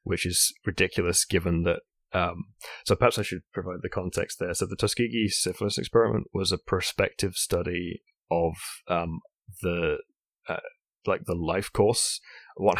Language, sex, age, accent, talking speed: English, male, 30-49, British, 150 wpm